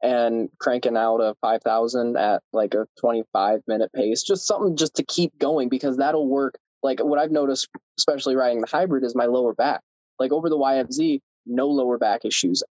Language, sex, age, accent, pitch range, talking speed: English, male, 20-39, American, 120-145 Hz, 190 wpm